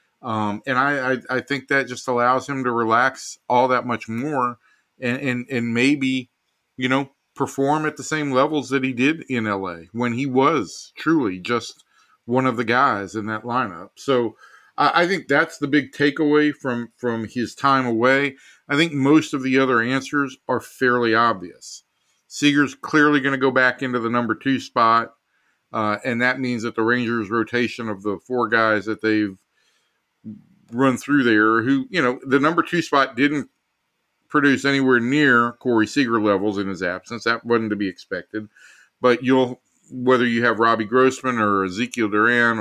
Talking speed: 180 wpm